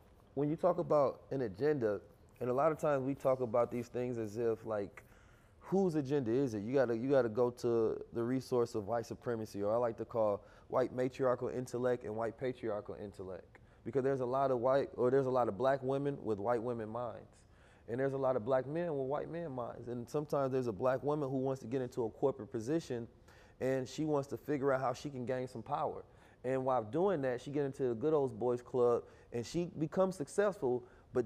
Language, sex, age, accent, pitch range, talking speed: English, male, 20-39, American, 120-140 Hz, 225 wpm